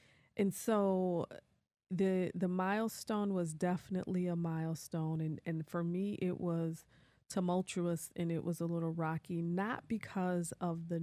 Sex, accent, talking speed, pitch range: female, American, 140 wpm, 165-200 Hz